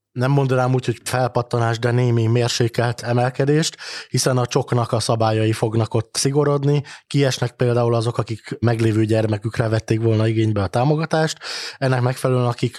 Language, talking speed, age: Hungarian, 145 wpm, 20-39